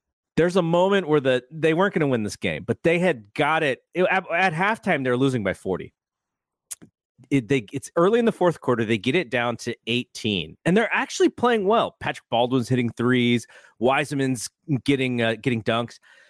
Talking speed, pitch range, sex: 195 wpm, 130-190 Hz, male